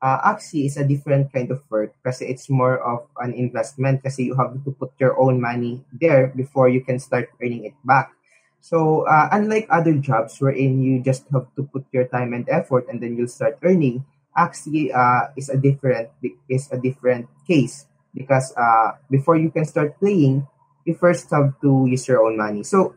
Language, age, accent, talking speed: Filipino, 20-39, native, 200 wpm